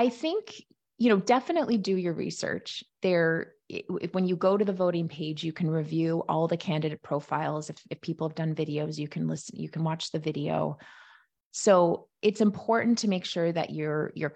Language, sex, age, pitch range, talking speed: English, female, 30-49, 155-190 Hz, 190 wpm